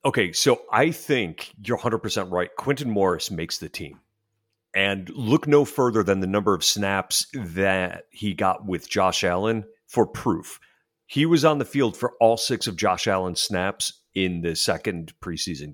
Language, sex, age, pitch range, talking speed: English, male, 40-59, 100-145 Hz, 170 wpm